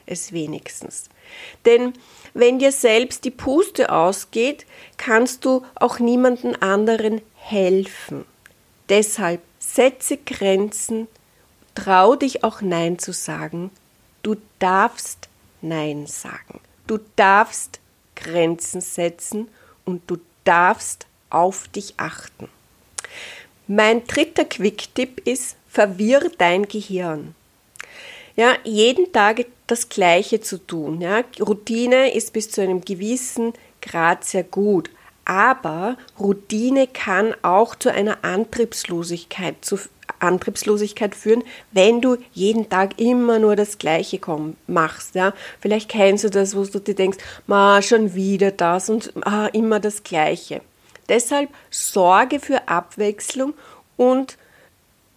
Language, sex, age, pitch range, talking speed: German, female, 40-59, 185-245 Hz, 115 wpm